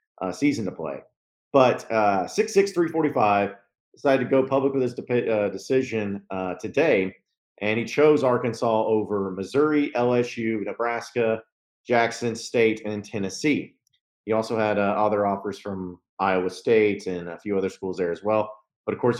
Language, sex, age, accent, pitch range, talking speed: English, male, 40-59, American, 100-120 Hz, 160 wpm